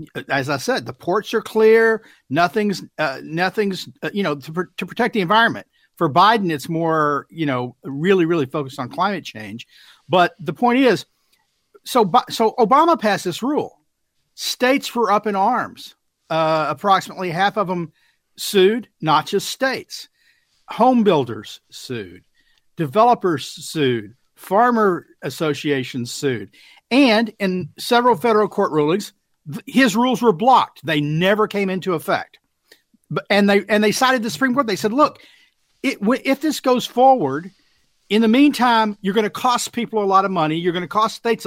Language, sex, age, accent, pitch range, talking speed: English, male, 50-69, American, 175-245 Hz, 160 wpm